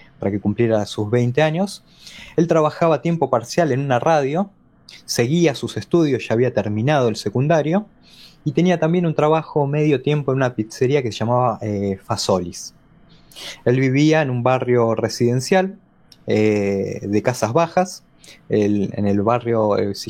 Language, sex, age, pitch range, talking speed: Spanish, male, 20-39, 115-165 Hz, 160 wpm